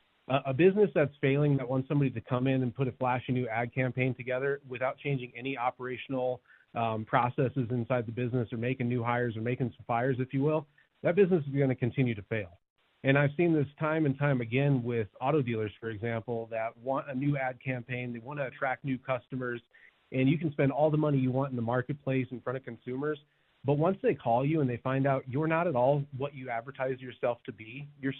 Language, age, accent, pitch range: English, 30-49, American, 125-145 Hz